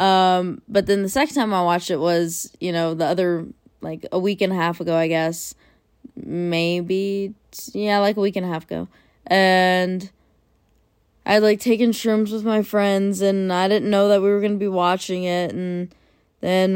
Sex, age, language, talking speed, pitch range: female, 20-39, English, 195 wpm, 175-195 Hz